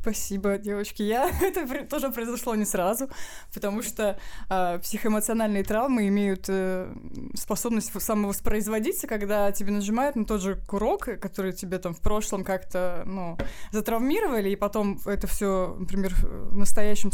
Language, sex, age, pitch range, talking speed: Russian, female, 20-39, 190-230 Hz, 135 wpm